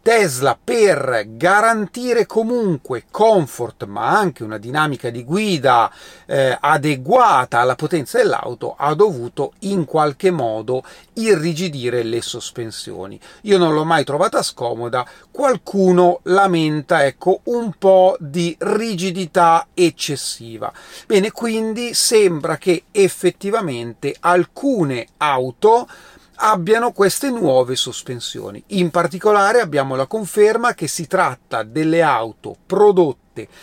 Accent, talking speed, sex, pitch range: native, 105 wpm, male, 135-200 Hz